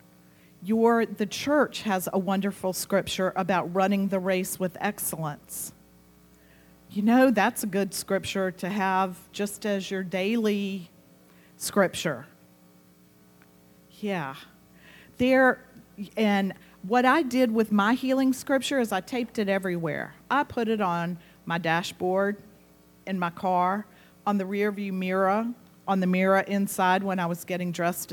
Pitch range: 170-215 Hz